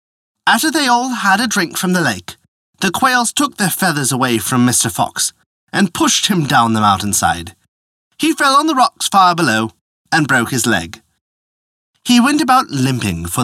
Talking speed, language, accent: 180 wpm, English, British